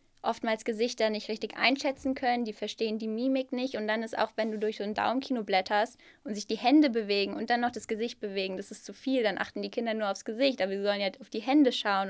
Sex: female